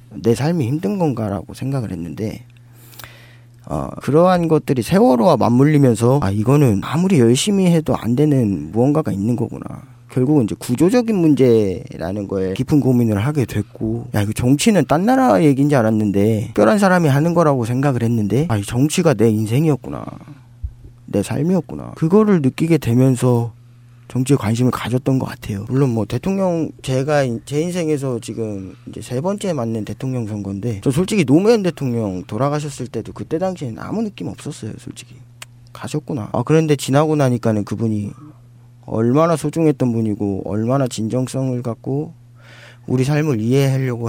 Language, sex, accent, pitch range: Korean, male, native, 115-150 Hz